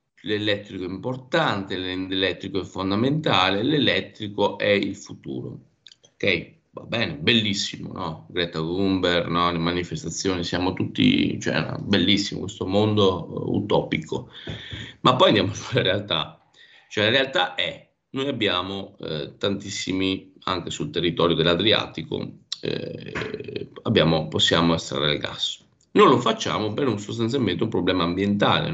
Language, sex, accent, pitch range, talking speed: Italian, male, native, 90-120 Hz, 125 wpm